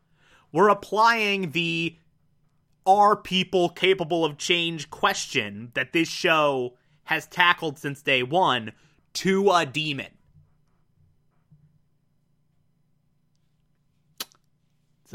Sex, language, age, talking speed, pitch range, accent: male, English, 30-49, 85 wpm, 150-205 Hz, American